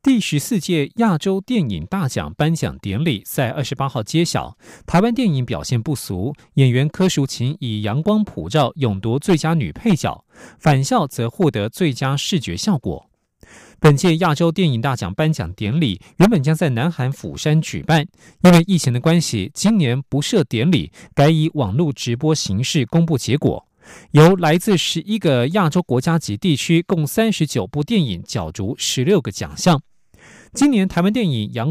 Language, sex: German, male